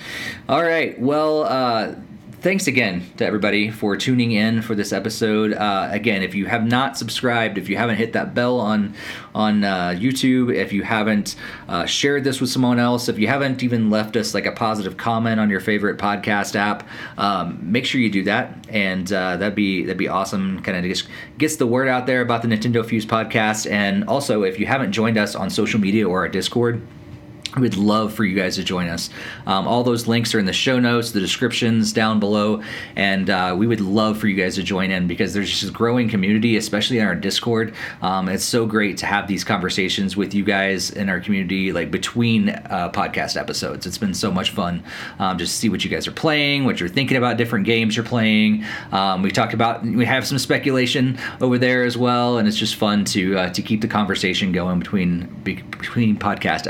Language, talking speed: English, 215 wpm